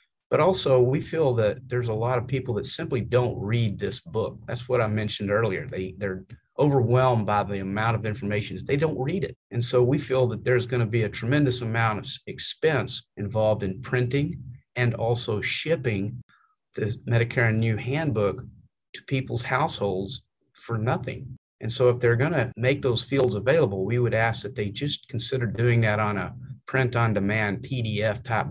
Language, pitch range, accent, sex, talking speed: English, 105-130 Hz, American, male, 185 wpm